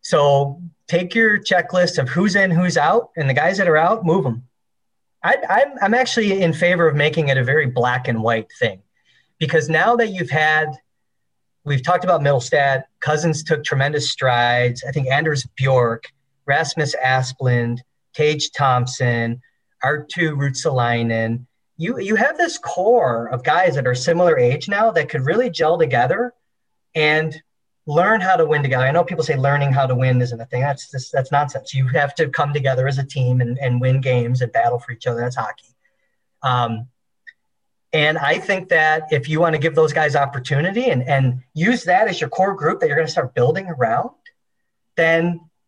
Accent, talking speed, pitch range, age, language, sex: American, 185 wpm, 130-175 Hz, 30-49, English, male